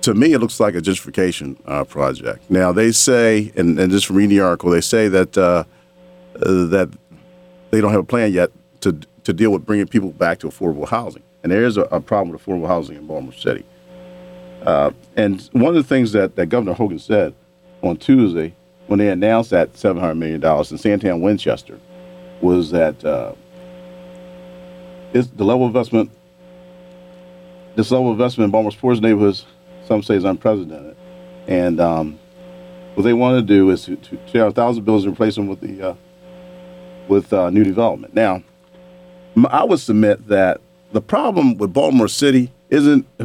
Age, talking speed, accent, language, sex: 50-69, 180 wpm, American, English, male